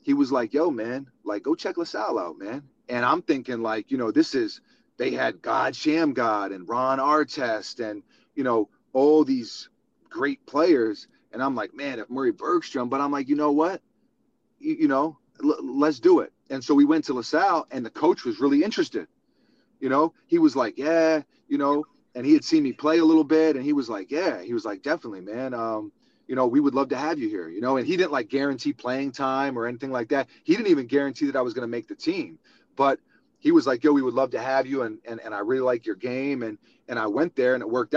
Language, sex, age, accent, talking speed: English, male, 30-49, American, 245 wpm